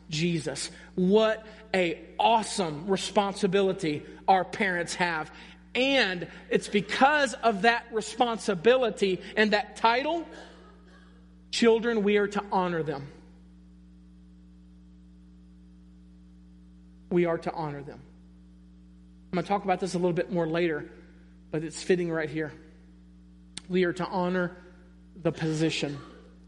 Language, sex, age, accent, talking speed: English, male, 40-59, American, 115 wpm